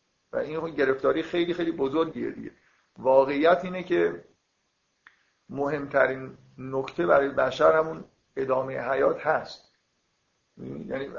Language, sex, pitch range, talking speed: Persian, male, 130-160 Hz, 95 wpm